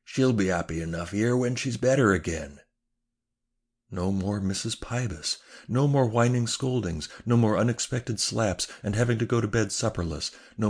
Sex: male